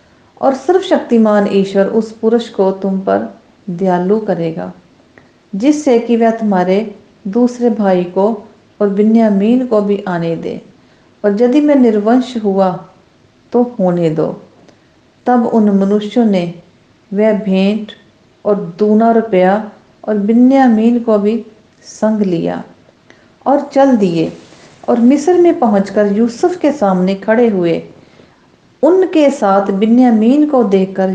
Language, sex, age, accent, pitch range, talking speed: English, female, 50-69, Indian, 195-245 Hz, 125 wpm